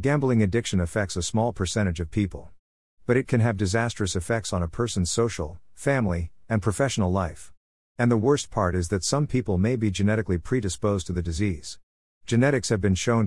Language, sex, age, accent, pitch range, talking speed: English, male, 50-69, American, 90-115 Hz, 185 wpm